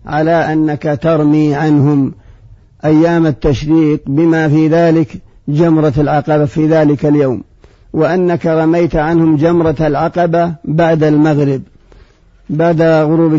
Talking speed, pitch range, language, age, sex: 105 wpm, 150-170 Hz, Arabic, 50-69, male